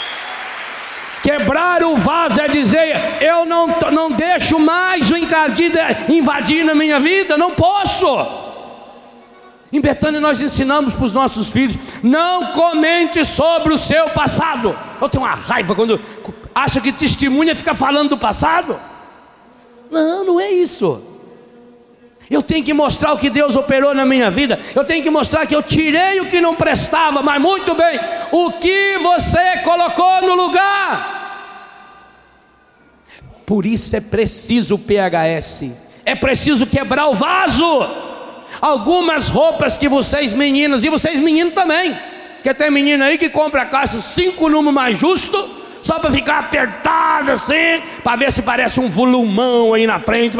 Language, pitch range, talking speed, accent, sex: Portuguese, 250-335 Hz, 150 wpm, Brazilian, male